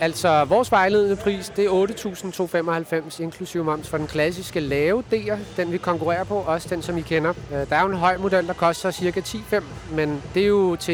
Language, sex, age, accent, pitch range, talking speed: Danish, male, 30-49, native, 150-195 Hz, 210 wpm